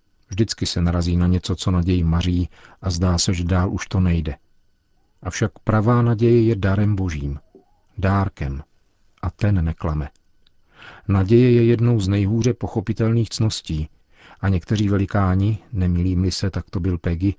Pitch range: 85-105 Hz